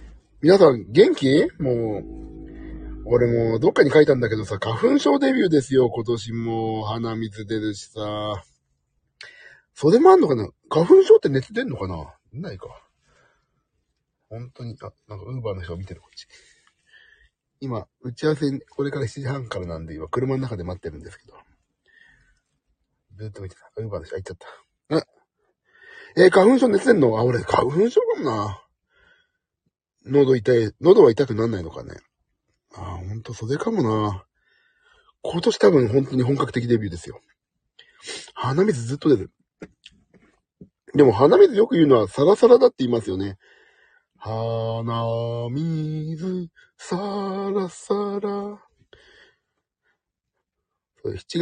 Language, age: Japanese, 40-59